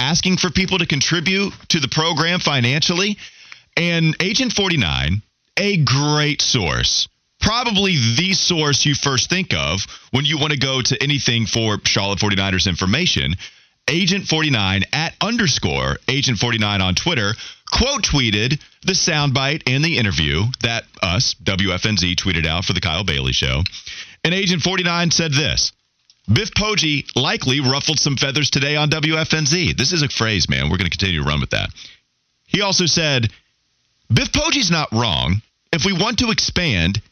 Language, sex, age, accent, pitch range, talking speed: English, male, 30-49, American, 105-165 Hz, 155 wpm